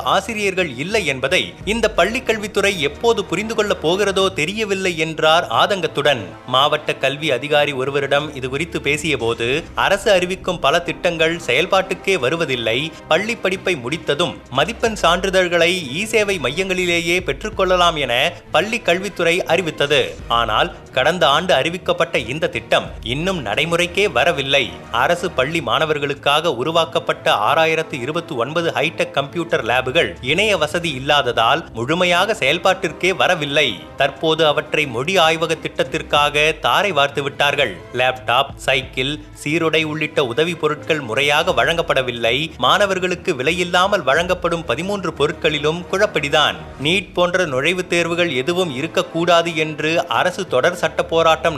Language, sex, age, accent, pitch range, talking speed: Tamil, male, 30-49, native, 145-180 Hz, 110 wpm